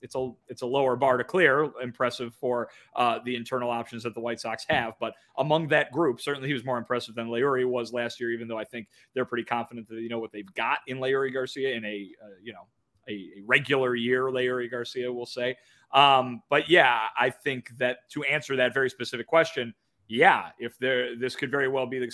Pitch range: 115-140 Hz